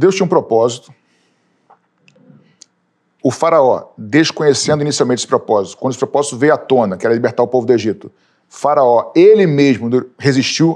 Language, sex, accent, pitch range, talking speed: Portuguese, male, Brazilian, 130-165 Hz, 155 wpm